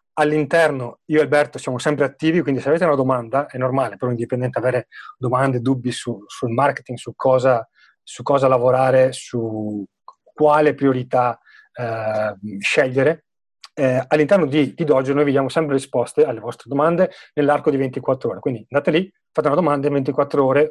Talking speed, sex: 165 wpm, male